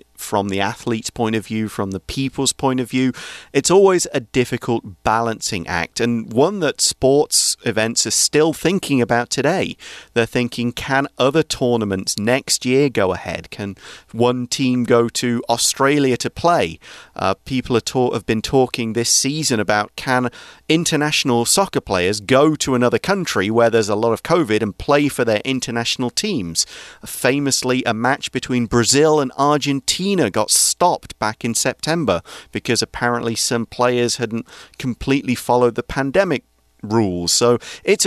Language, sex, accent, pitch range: Chinese, male, British, 115-140 Hz